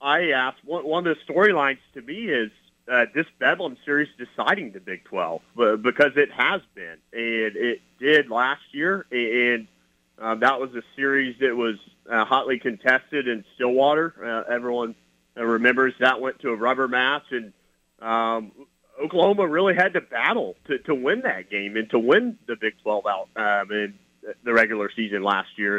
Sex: male